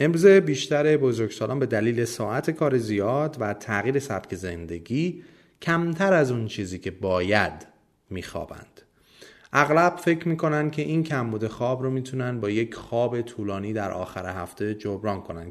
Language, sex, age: Persian, male, 30-49